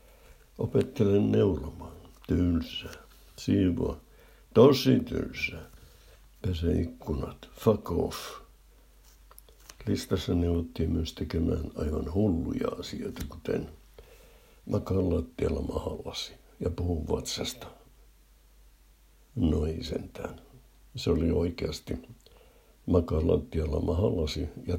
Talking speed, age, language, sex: 75 wpm, 60-79, Finnish, male